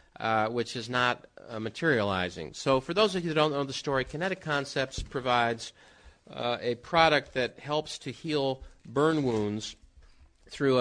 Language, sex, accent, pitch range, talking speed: English, male, American, 115-150 Hz, 160 wpm